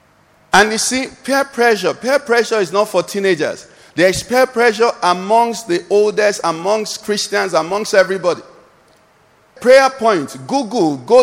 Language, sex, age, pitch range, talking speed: English, male, 50-69, 155-215 Hz, 135 wpm